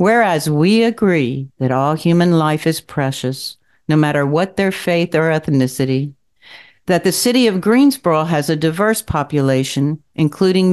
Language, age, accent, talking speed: English, 60-79, American, 145 wpm